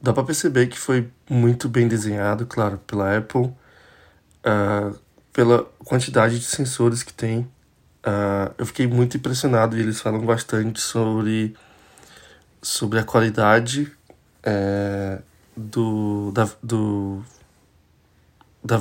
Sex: male